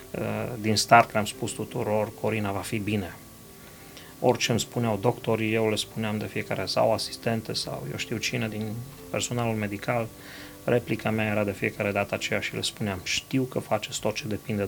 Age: 30-49